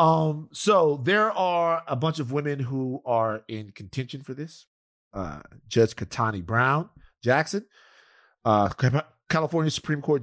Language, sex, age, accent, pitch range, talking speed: English, male, 30-49, American, 105-145 Hz, 135 wpm